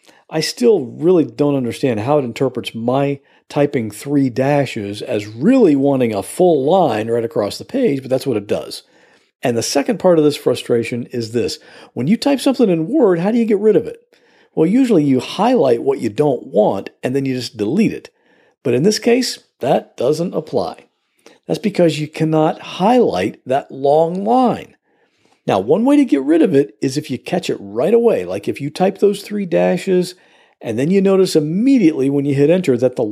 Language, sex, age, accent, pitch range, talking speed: English, male, 50-69, American, 135-220 Hz, 200 wpm